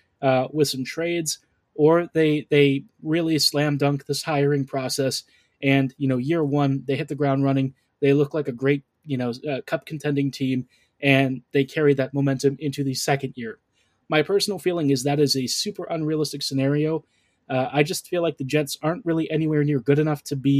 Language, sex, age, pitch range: English, male, 20-39, 135-155 Hz